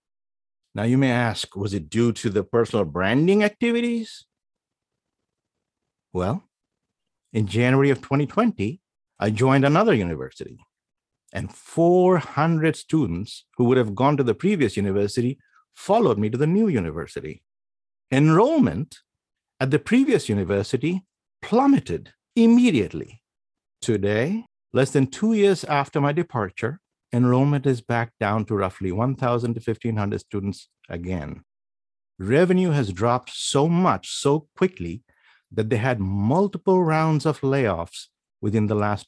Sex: male